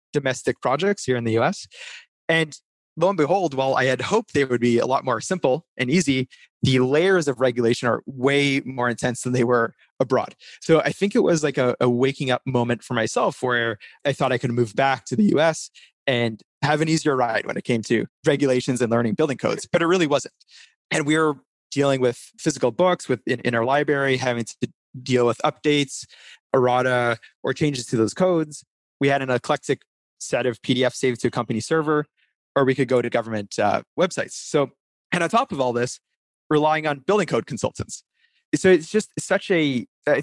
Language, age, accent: English, 20-39, American